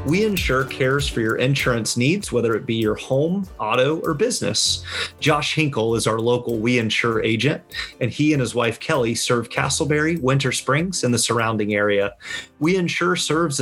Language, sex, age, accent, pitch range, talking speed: English, male, 30-49, American, 115-155 Hz, 175 wpm